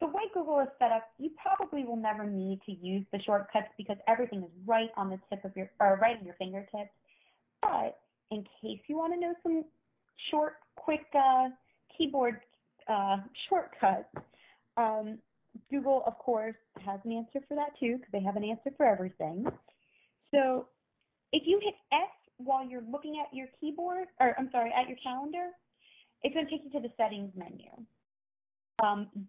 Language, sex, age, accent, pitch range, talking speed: English, female, 30-49, American, 210-275 Hz, 180 wpm